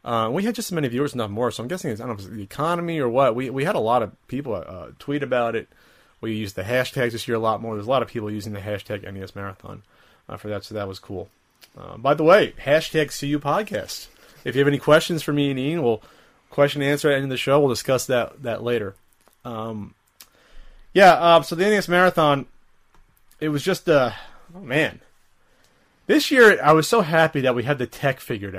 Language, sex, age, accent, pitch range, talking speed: English, male, 30-49, American, 115-150 Hz, 240 wpm